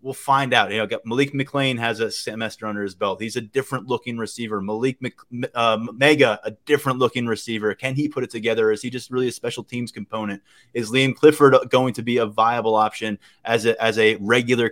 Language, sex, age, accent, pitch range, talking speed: English, male, 20-39, American, 110-130 Hz, 205 wpm